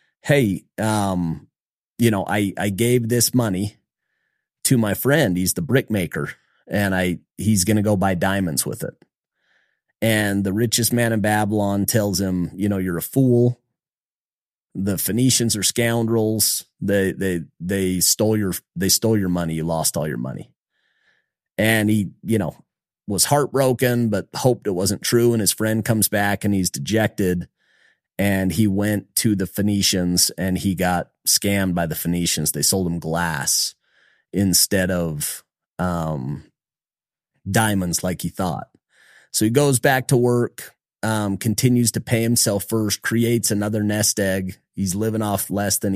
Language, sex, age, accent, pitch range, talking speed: English, male, 30-49, American, 95-115 Hz, 155 wpm